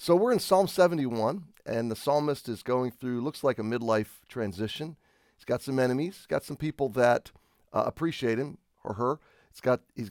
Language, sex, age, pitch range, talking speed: English, male, 40-59, 115-150 Hz, 190 wpm